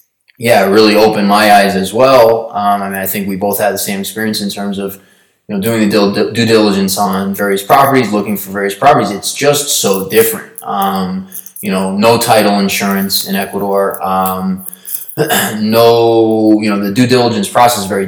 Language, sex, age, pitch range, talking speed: English, male, 20-39, 100-115 Hz, 190 wpm